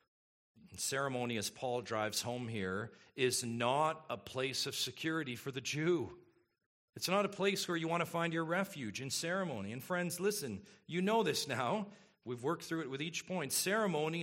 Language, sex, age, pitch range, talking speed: English, male, 40-59, 110-175 Hz, 180 wpm